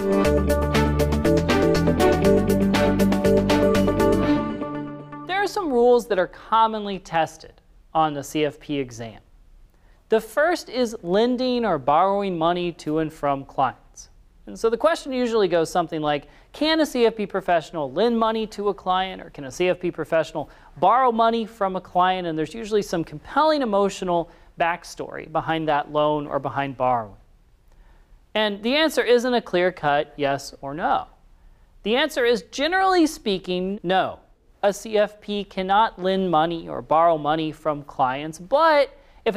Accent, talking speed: American, 135 wpm